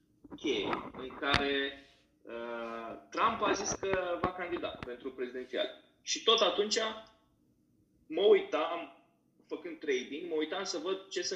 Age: 20-39